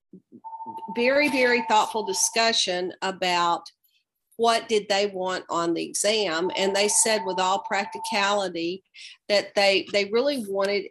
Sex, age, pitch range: female, 40-59, 180-220 Hz